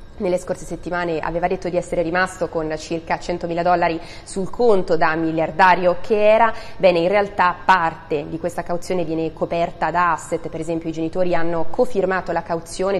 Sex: female